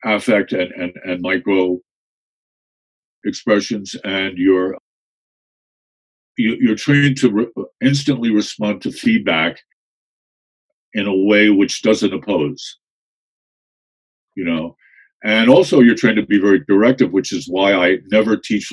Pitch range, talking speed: 90-130 Hz, 130 wpm